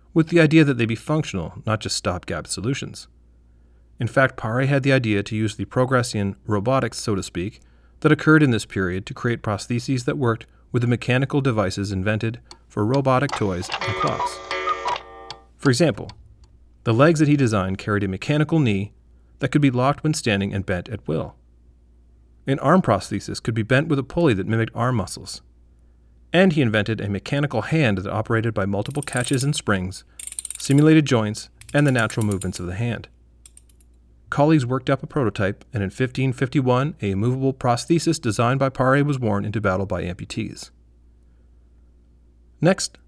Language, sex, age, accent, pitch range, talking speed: English, male, 40-59, American, 90-135 Hz, 170 wpm